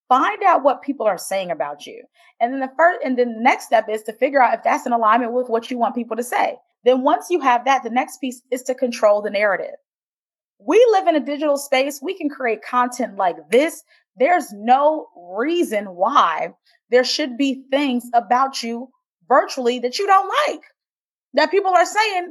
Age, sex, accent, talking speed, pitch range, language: 20-39, female, American, 205 wpm, 225-305 Hz, English